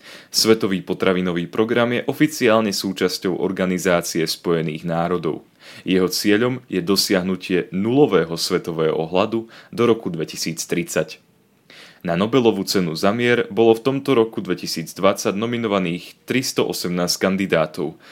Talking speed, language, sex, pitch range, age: 105 wpm, Slovak, male, 90-115 Hz, 30-49